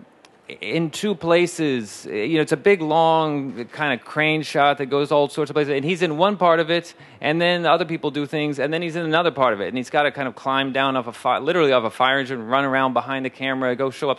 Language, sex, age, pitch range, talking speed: English, male, 30-49, 125-150 Hz, 265 wpm